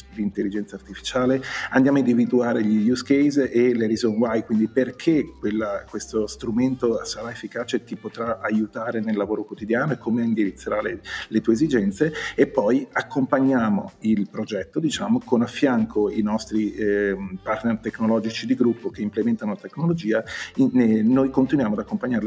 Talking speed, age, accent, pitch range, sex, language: 150 wpm, 40-59, native, 110-140 Hz, male, Italian